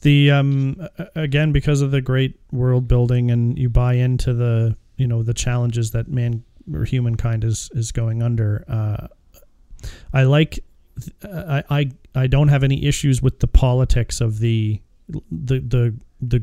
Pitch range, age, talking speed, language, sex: 115-135 Hz, 30-49, 160 wpm, English, male